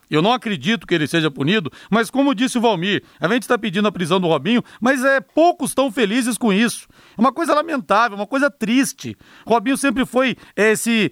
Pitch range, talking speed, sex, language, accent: 170-230 Hz, 200 wpm, male, Portuguese, Brazilian